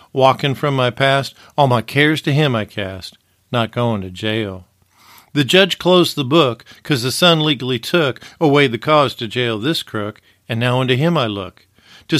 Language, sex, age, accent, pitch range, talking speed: English, male, 50-69, American, 110-150 Hz, 190 wpm